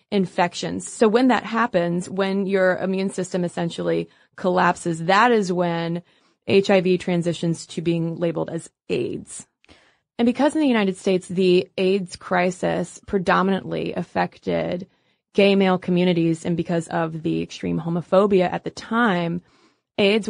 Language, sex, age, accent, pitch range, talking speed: English, female, 20-39, American, 175-210 Hz, 135 wpm